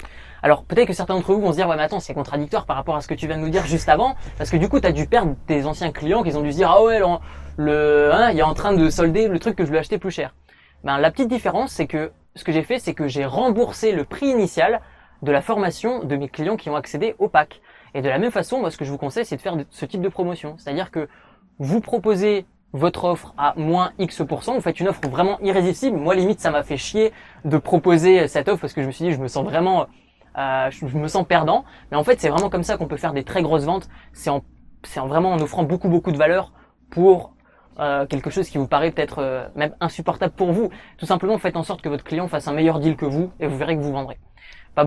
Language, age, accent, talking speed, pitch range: French, 20-39, French, 275 wpm, 145-185 Hz